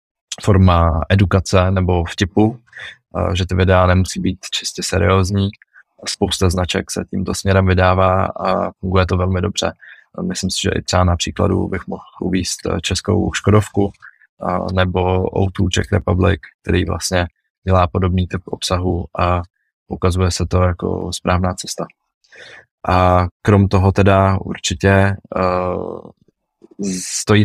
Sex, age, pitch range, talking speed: male, 20-39, 90-100 Hz, 125 wpm